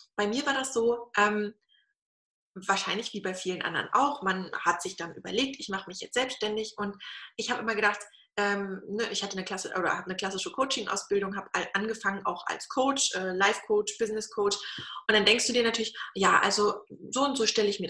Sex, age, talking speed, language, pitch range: female, 20-39, 200 wpm, German, 205-255 Hz